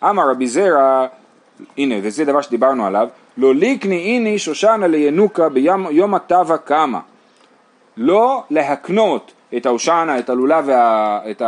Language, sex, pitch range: Hebrew, male, 140-225 Hz